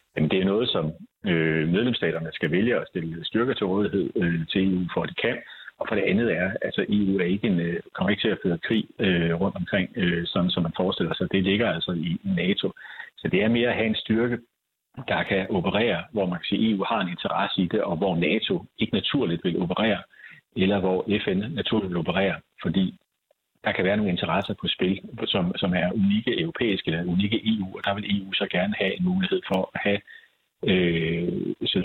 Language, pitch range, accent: Danish, 90-105 Hz, native